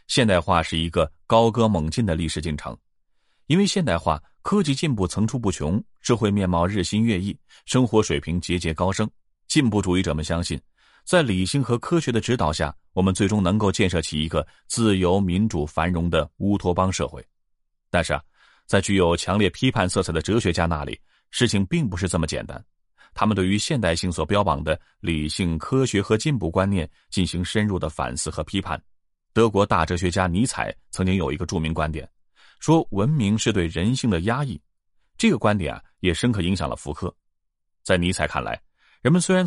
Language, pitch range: Chinese, 80-110 Hz